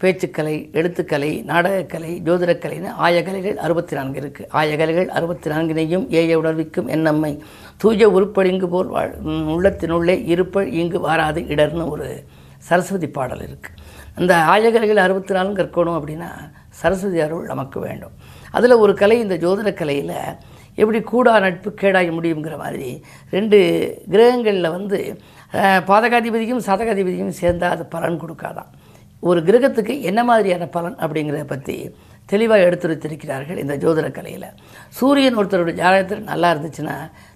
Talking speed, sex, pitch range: 120 wpm, female, 155-195 Hz